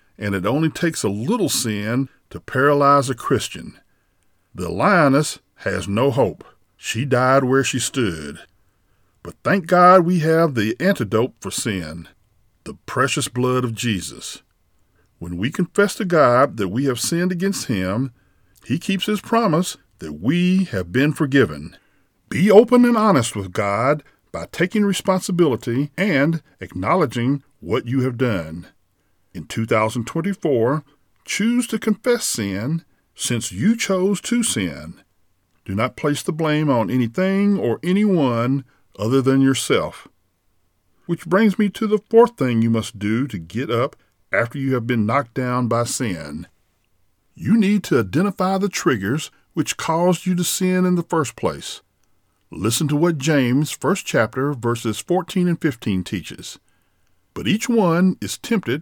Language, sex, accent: English, male, American